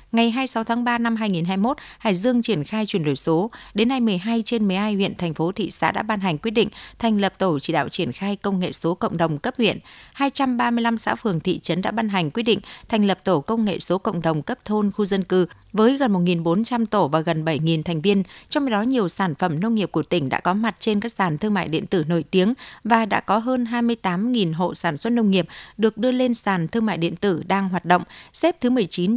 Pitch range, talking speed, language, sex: 180-230 Hz, 245 wpm, Vietnamese, female